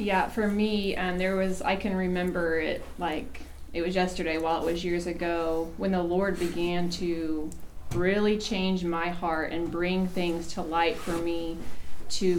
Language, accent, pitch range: English, American, 165-195 Hz